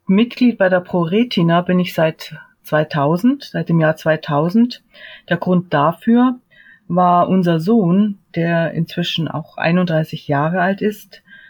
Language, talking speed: German, 130 wpm